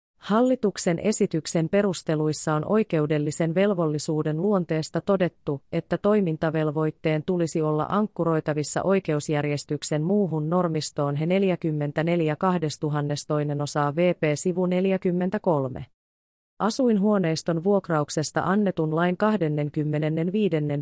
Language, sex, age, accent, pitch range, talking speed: Finnish, female, 30-49, native, 150-185 Hz, 75 wpm